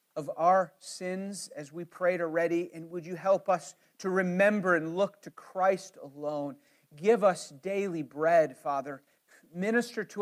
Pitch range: 170-215 Hz